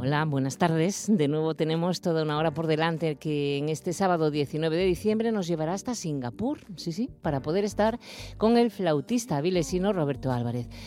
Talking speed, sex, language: 180 wpm, female, Spanish